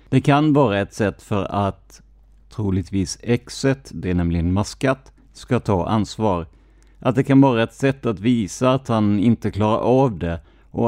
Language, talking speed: Swedish, 170 wpm